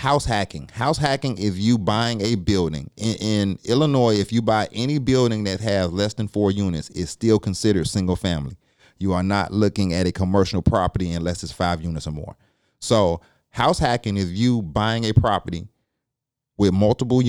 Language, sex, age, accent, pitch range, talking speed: English, male, 30-49, American, 95-115 Hz, 180 wpm